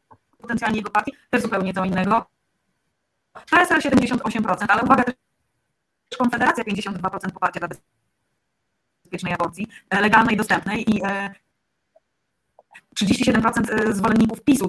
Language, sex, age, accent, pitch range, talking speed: Polish, female, 20-39, native, 195-245 Hz, 100 wpm